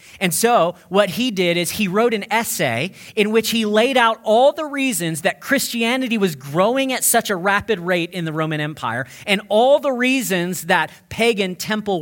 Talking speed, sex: 190 wpm, male